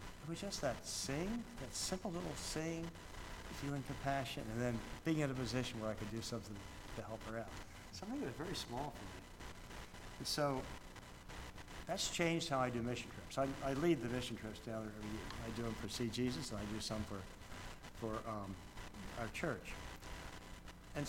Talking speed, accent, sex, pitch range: 195 wpm, American, male, 110-145 Hz